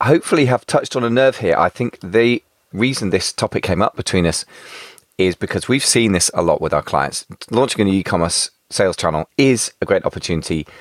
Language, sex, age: English, male, 30-49